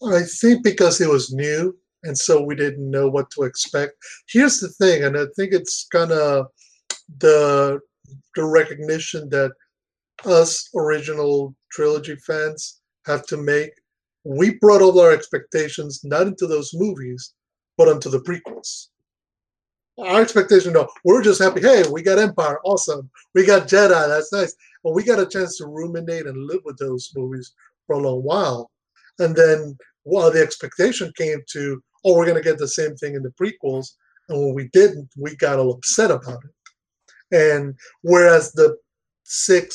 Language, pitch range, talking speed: English, 145-190 Hz, 170 wpm